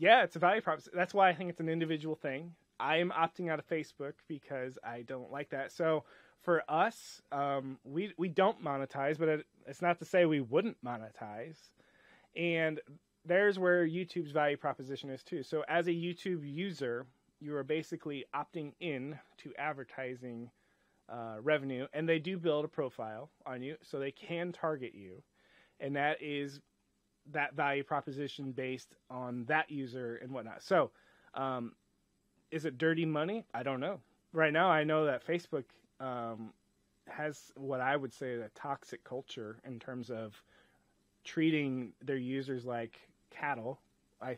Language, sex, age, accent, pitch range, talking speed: English, male, 30-49, American, 130-165 Hz, 165 wpm